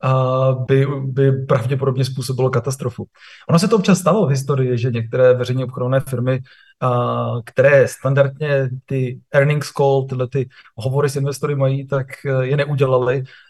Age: 20-39